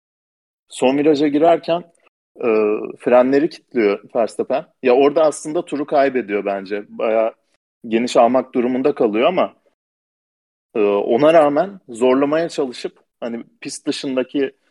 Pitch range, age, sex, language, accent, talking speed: 115-140 Hz, 40-59, male, Turkish, native, 110 wpm